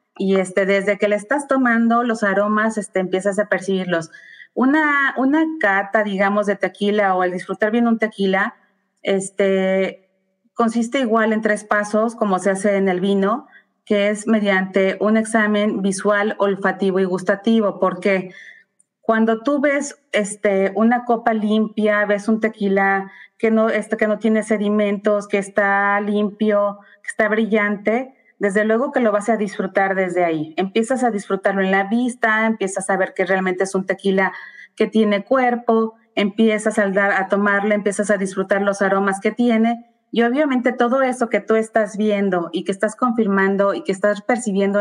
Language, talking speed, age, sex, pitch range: Spanish, 165 wpm, 30-49, female, 195-225 Hz